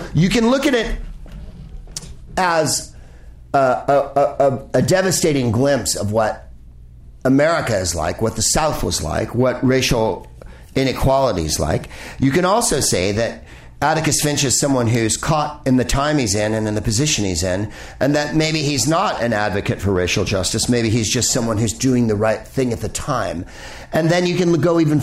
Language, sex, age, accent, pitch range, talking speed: English, male, 50-69, American, 105-145 Hz, 180 wpm